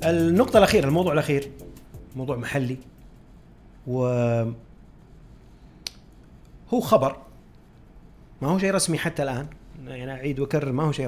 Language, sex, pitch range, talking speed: Arabic, male, 125-165 Hz, 110 wpm